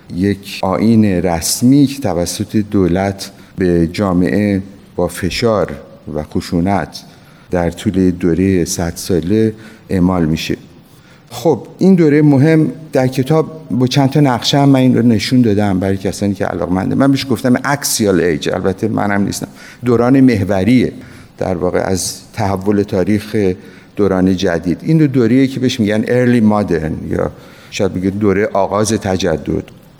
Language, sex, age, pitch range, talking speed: Persian, male, 50-69, 95-125 Hz, 140 wpm